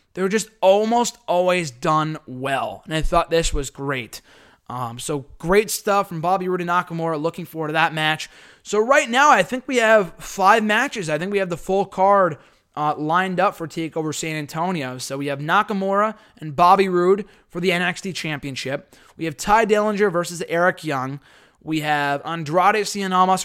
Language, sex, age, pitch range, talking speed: English, male, 20-39, 150-195 Hz, 185 wpm